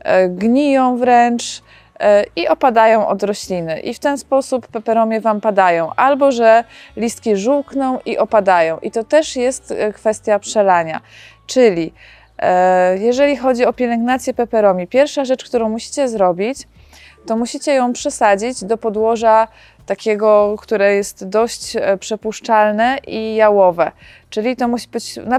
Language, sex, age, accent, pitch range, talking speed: Polish, female, 20-39, native, 210-250 Hz, 130 wpm